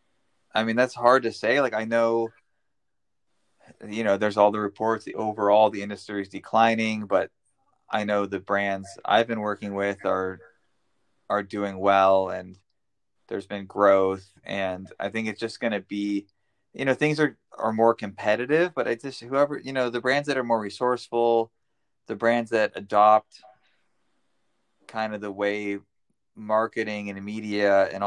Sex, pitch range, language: male, 100-110 Hz, English